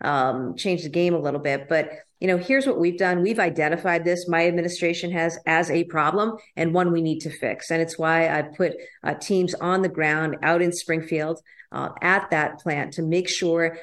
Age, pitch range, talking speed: 40-59, 155-185 Hz, 215 wpm